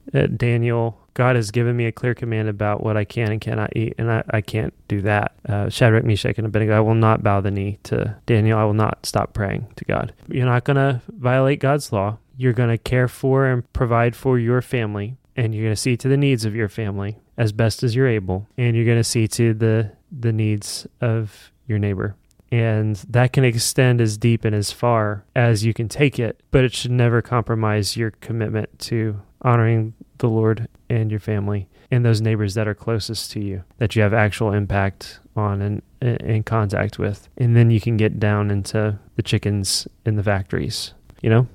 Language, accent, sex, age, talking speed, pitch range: English, American, male, 20-39, 210 wpm, 105-120 Hz